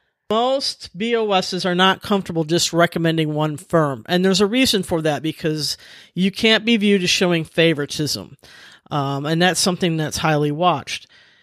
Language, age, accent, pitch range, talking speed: English, 40-59, American, 155-190 Hz, 160 wpm